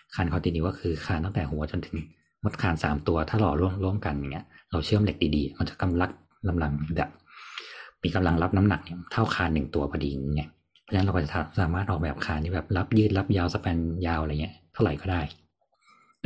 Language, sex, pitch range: Thai, male, 80-95 Hz